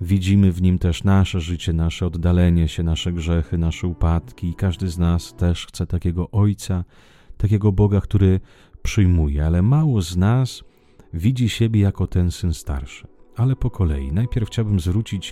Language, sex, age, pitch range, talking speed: Italian, male, 30-49, 85-110 Hz, 160 wpm